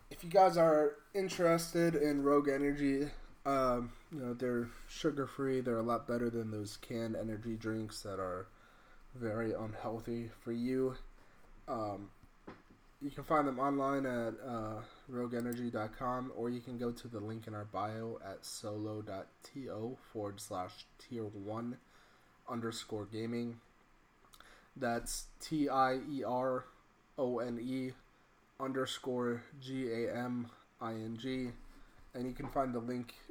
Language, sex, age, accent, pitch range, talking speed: English, male, 20-39, American, 110-125 Hz, 115 wpm